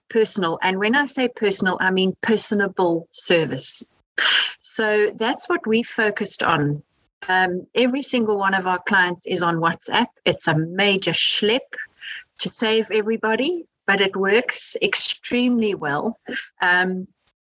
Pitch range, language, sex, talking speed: 180-215 Hz, English, female, 135 wpm